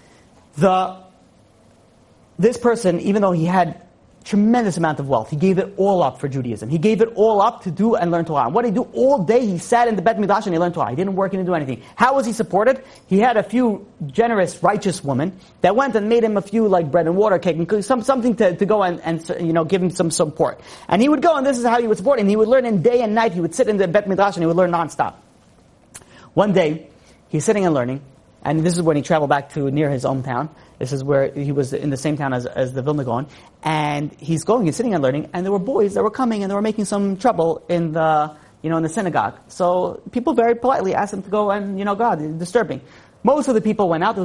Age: 40-59